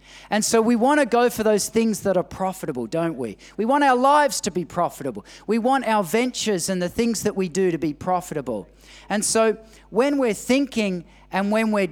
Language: English